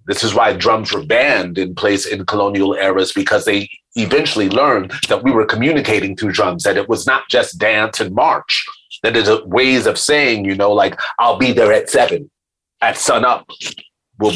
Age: 30-49